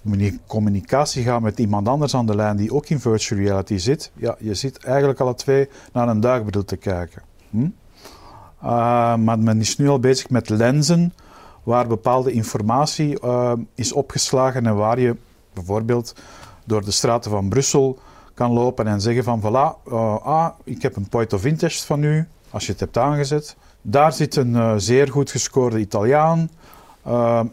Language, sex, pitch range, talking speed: Dutch, male, 110-140 Hz, 175 wpm